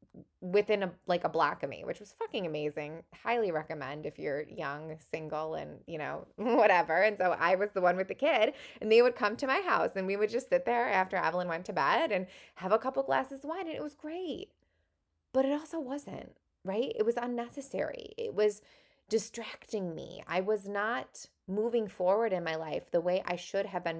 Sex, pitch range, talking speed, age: female, 165-230 Hz, 210 wpm, 20-39